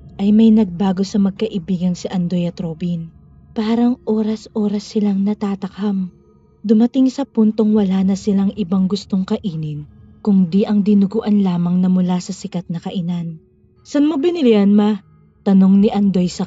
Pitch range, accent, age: 185-225 Hz, Filipino, 20-39